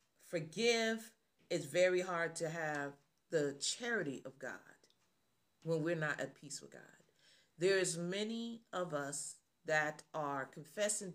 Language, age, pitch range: English, 40-59, 155-190 Hz